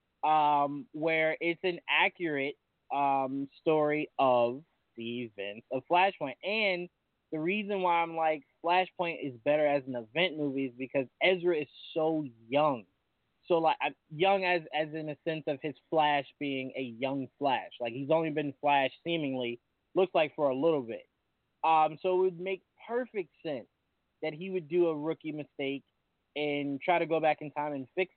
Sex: male